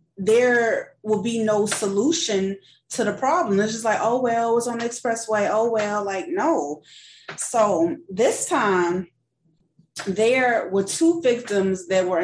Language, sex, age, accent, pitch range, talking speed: English, female, 20-39, American, 170-230 Hz, 150 wpm